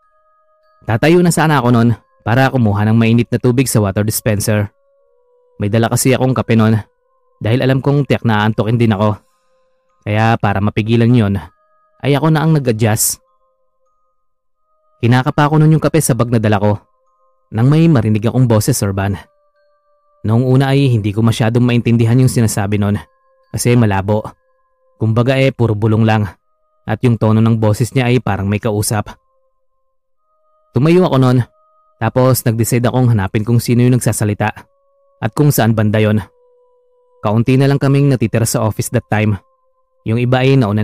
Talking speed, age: 160 wpm, 20-39